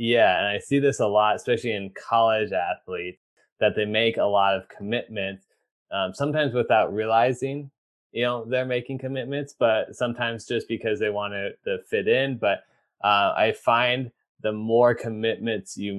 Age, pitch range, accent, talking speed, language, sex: 20-39, 95-115 Hz, American, 165 wpm, English, male